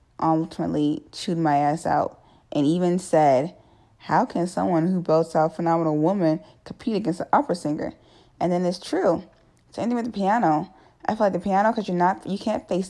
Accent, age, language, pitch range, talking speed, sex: American, 10-29, English, 150-190 Hz, 195 wpm, female